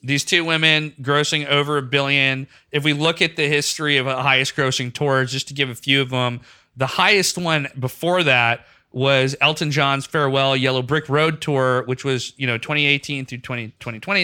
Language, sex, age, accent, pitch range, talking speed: English, male, 30-49, American, 125-155 Hz, 190 wpm